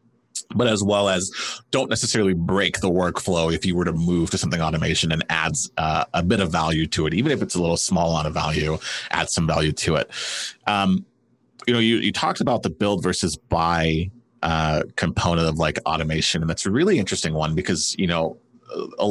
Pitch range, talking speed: 85-115 Hz, 205 wpm